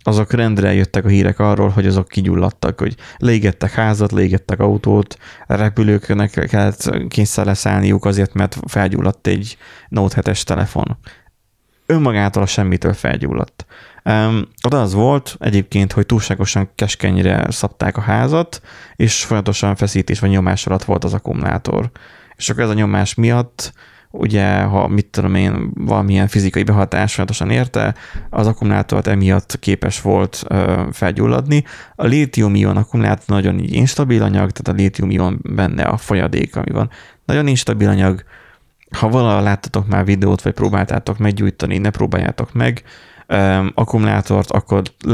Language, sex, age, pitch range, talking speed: Hungarian, male, 20-39, 95-110 Hz, 135 wpm